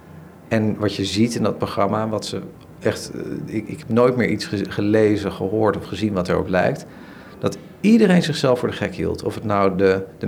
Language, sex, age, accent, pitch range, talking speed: Dutch, male, 50-69, Dutch, 95-120 Hz, 210 wpm